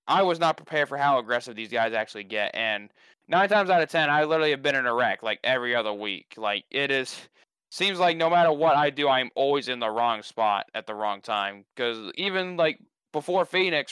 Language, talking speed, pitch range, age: English, 230 wpm, 120-160 Hz, 20-39